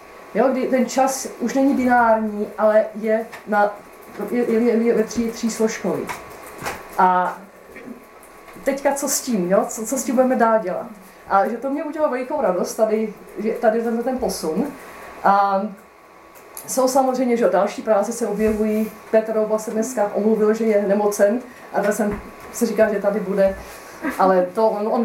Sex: female